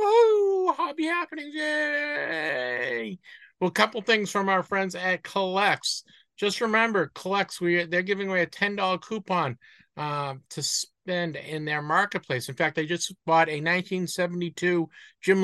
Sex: male